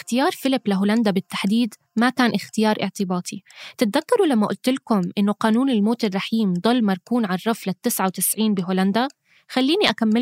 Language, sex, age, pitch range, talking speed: Arabic, female, 20-39, 200-260 Hz, 145 wpm